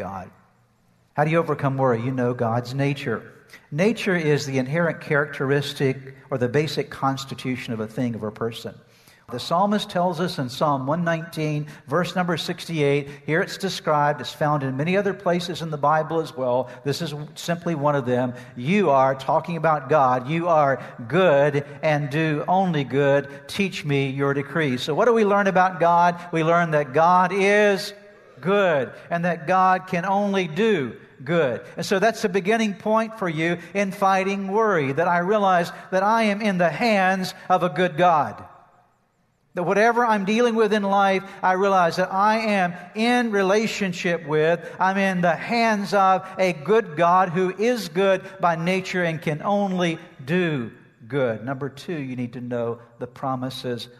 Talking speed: 175 wpm